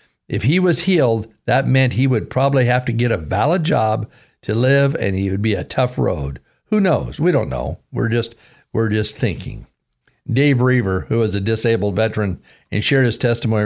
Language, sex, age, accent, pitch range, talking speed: English, male, 50-69, American, 110-145 Hz, 200 wpm